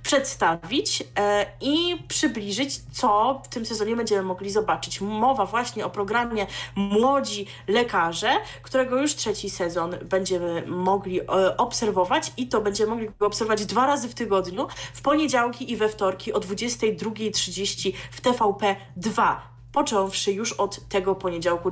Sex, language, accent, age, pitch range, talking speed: female, Polish, native, 20-39, 185-240 Hz, 125 wpm